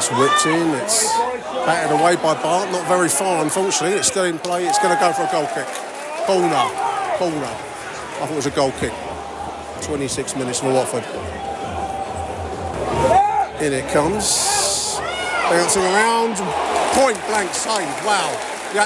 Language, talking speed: English, 145 wpm